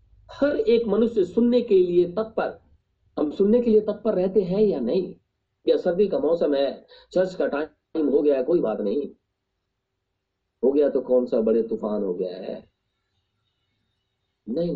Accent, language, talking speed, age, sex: native, Hindi, 165 wpm, 50-69, male